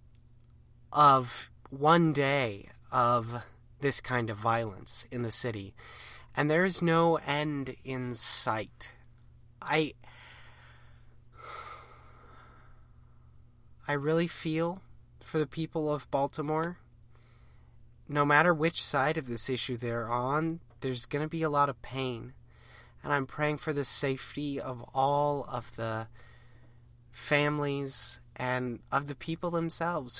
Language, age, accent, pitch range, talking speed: English, 30-49, American, 120-150 Hz, 120 wpm